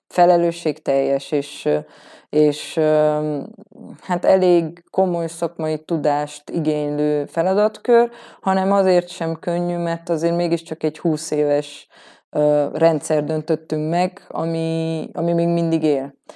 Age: 20-39